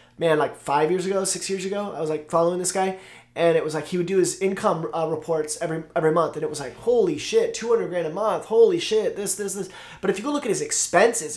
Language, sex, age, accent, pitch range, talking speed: English, male, 20-39, American, 160-210 Hz, 275 wpm